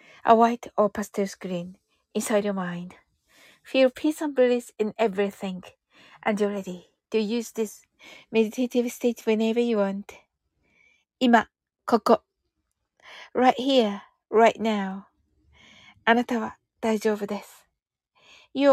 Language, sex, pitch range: Japanese, female, 210-325 Hz